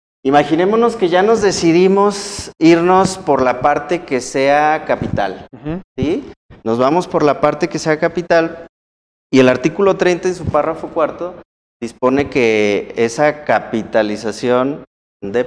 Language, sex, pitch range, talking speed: Spanish, male, 115-165 Hz, 130 wpm